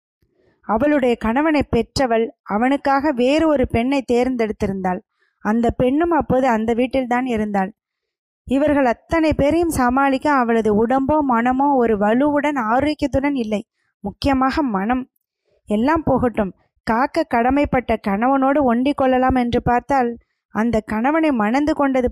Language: Tamil